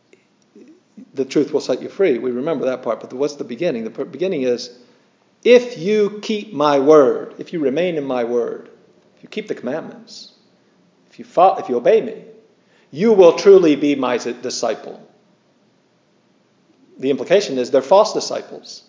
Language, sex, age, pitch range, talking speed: English, male, 40-59, 125-170 Hz, 165 wpm